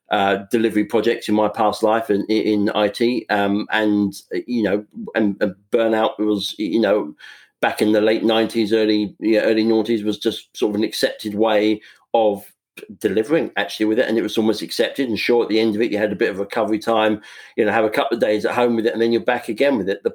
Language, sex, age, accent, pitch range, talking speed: English, male, 50-69, British, 105-115 Hz, 240 wpm